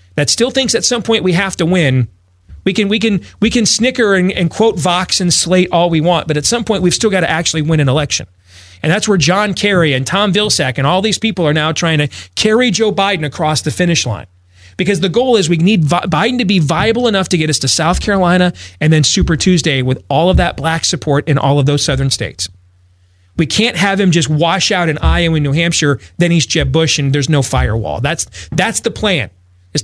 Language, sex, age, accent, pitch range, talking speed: English, male, 40-59, American, 130-185 Hz, 240 wpm